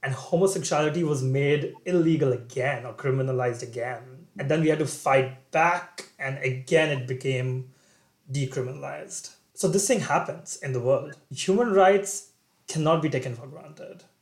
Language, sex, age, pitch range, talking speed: English, male, 30-49, 130-160 Hz, 150 wpm